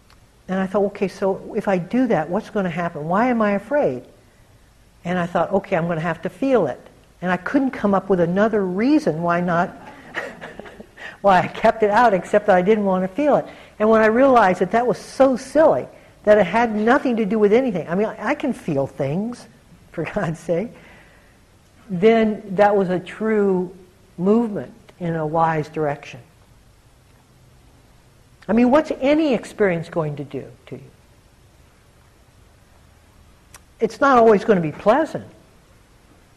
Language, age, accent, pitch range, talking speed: English, 60-79, American, 170-225 Hz, 170 wpm